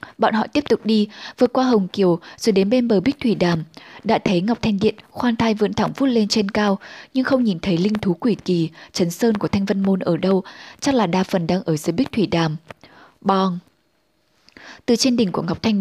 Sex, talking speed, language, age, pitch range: female, 235 wpm, Vietnamese, 10-29, 180-225 Hz